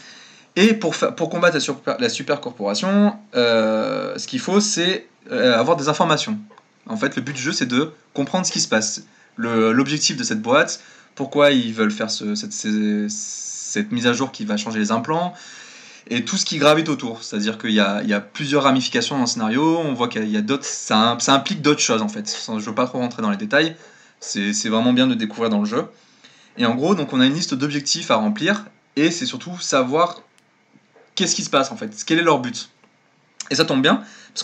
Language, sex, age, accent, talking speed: French, male, 20-39, French, 225 wpm